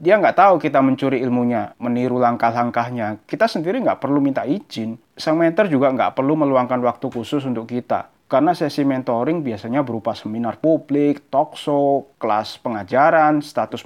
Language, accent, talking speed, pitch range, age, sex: Indonesian, native, 155 wpm, 120-155 Hz, 30-49, male